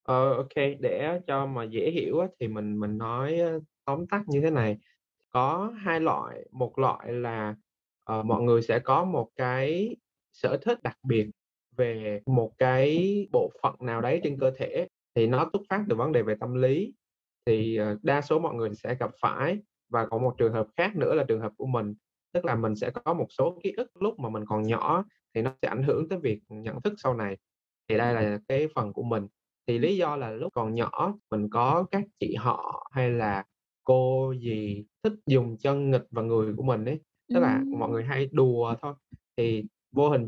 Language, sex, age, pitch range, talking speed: Vietnamese, male, 20-39, 110-155 Hz, 210 wpm